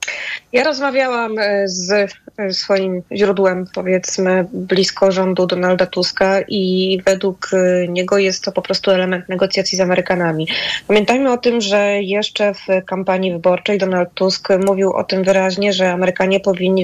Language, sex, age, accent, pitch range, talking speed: Polish, female, 20-39, native, 190-210 Hz, 135 wpm